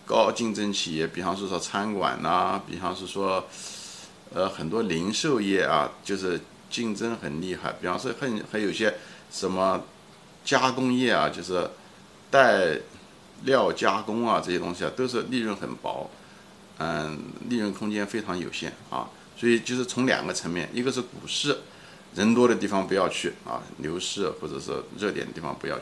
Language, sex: Chinese, male